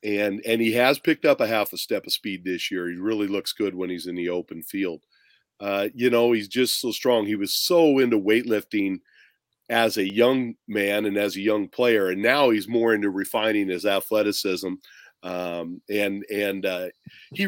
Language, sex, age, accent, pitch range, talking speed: English, male, 40-59, American, 100-120 Hz, 200 wpm